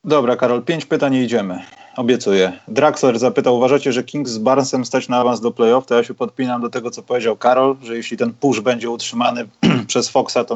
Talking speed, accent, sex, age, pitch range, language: 210 wpm, native, male, 30-49, 105-130 Hz, Polish